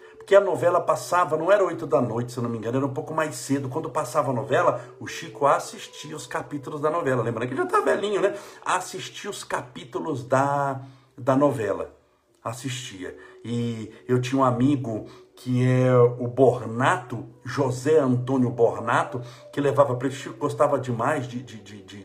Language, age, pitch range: Portuguese, 60-79, 130-180 Hz